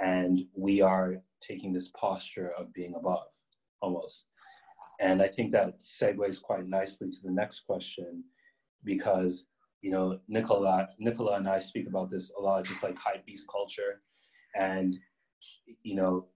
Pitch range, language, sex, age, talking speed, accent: 95-110 Hz, English, male, 30-49, 150 wpm, American